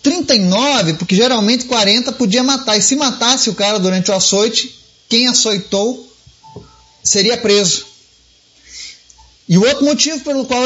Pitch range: 180-245 Hz